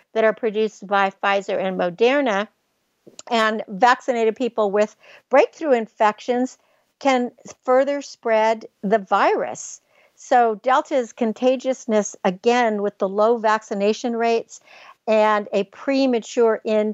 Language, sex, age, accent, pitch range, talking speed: English, female, 60-79, American, 205-255 Hz, 110 wpm